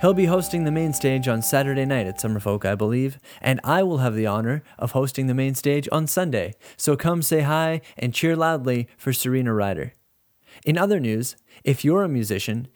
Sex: male